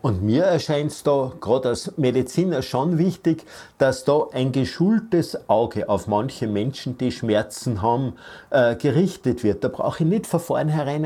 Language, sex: German, male